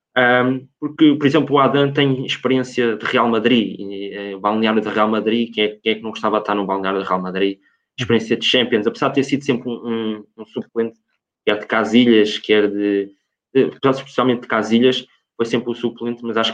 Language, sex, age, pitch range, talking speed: Portuguese, male, 20-39, 105-125 Hz, 220 wpm